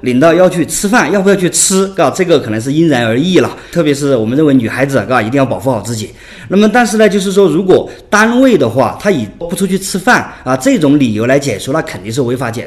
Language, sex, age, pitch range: Chinese, male, 30-49, 125-170 Hz